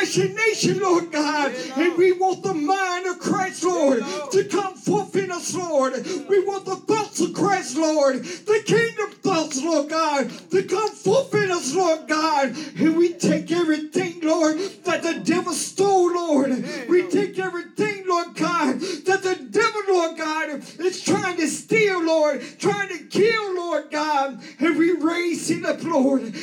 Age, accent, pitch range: 40-59, American, 305-375 Hz